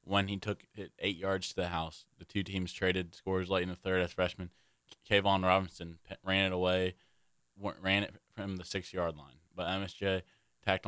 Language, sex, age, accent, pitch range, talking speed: English, male, 20-39, American, 85-95 Hz, 190 wpm